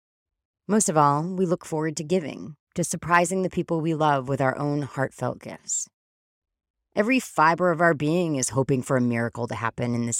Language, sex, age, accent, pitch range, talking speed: English, female, 30-49, American, 125-175 Hz, 195 wpm